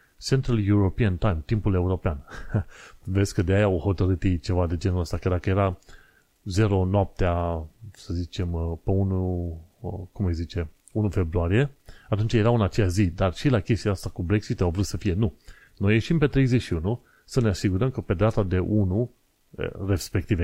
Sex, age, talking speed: male, 30-49, 170 wpm